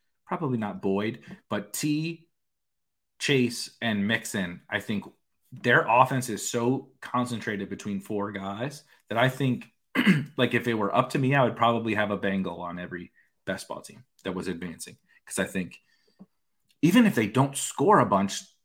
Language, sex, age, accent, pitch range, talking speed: English, male, 30-49, American, 100-135 Hz, 165 wpm